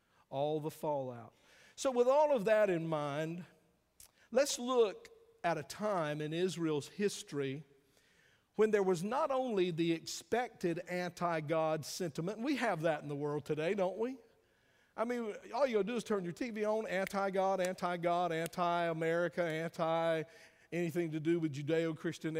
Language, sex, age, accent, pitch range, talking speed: English, male, 50-69, American, 155-215 Hz, 150 wpm